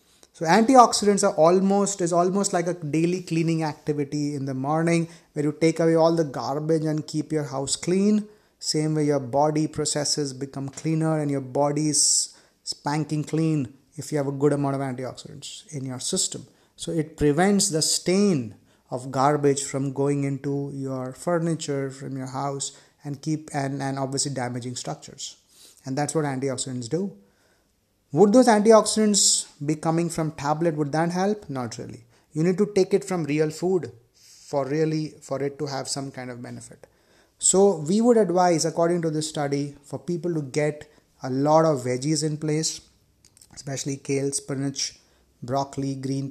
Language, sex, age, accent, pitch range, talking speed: Hindi, male, 30-49, native, 135-160 Hz, 170 wpm